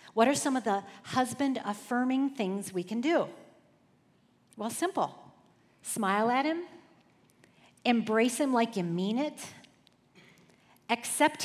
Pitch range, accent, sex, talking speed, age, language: 205-275 Hz, American, female, 120 wpm, 40-59, English